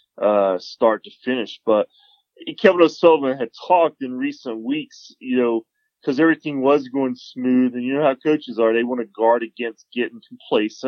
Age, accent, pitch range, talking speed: 20-39, American, 115-160 Hz, 175 wpm